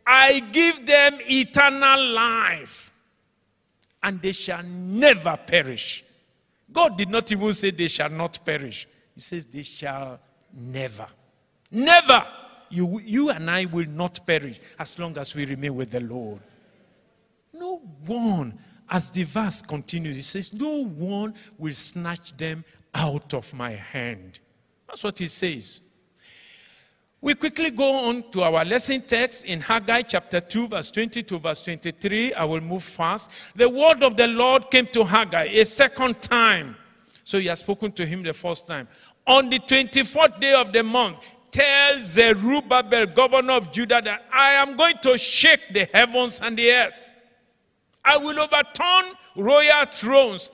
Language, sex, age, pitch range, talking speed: English, male, 50-69, 170-255 Hz, 155 wpm